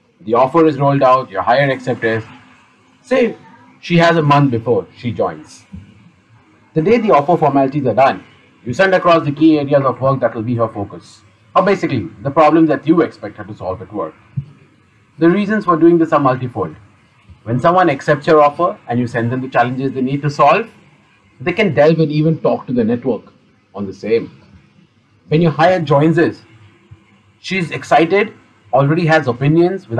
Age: 40-59